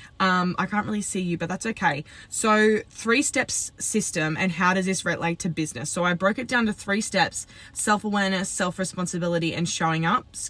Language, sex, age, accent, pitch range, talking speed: English, female, 20-39, Australian, 165-205 Hz, 195 wpm